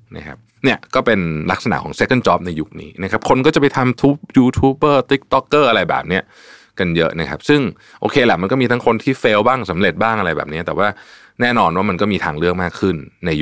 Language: Thai